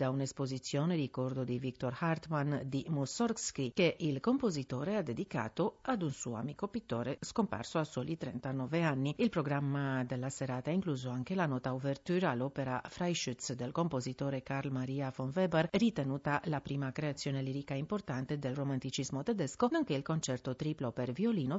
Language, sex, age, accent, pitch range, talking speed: Italian, female, 40-59, native, 130-185 Hz, 155 wpm